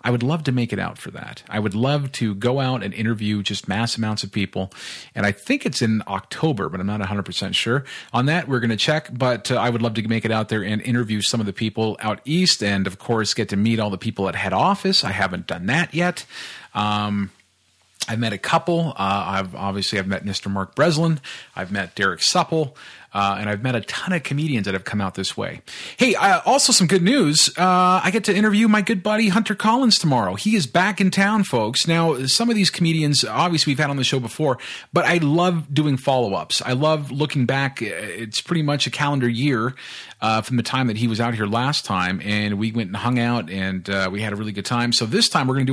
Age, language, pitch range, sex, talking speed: 40-59, English, 105-155 Hz, male, 245 wpm